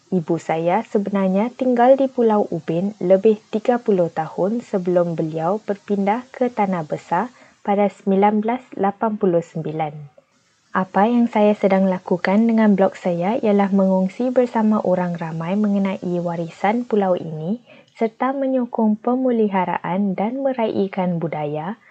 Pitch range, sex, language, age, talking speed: 170-215 Hz, female, Malay, 20-39, 110 wpm